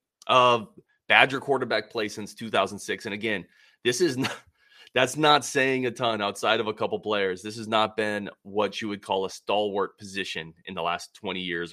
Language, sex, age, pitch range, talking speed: English, male, 30-49, 95-125 Hz, 195 wpm